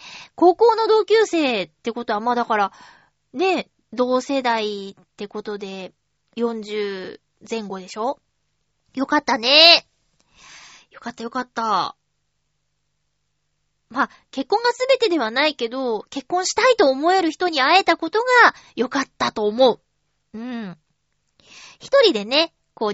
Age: 20-39